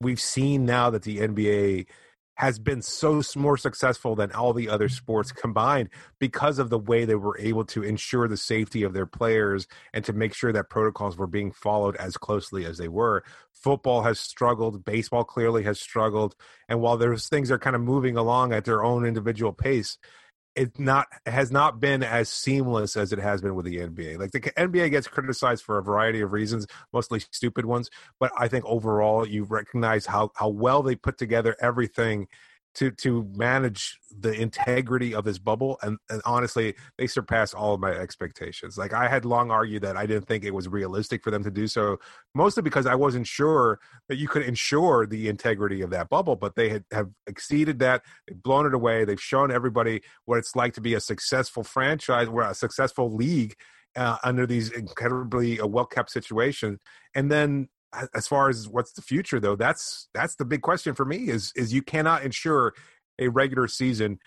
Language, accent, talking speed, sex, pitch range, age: English, American, 195 wpm, male, 105-130 Hz, 30-49